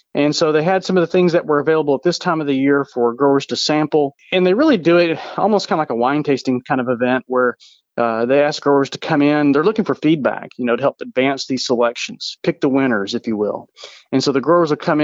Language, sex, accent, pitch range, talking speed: English, male, American, 130-160 Hz, 265 wpm